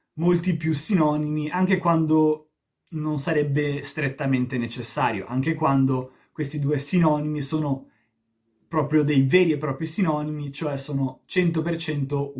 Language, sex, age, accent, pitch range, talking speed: Italian, male, 30-49, native, 125-155 Hz, 115 wpm